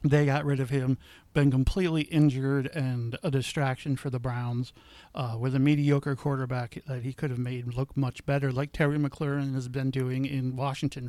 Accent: American